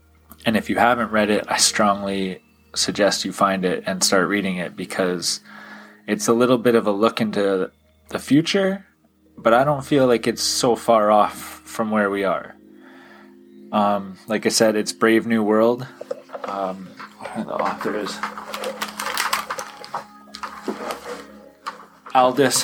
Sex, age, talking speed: male, 20-39, 140 wpm